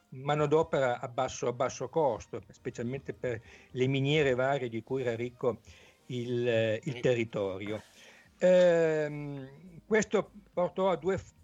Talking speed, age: 120 wpm, 60-79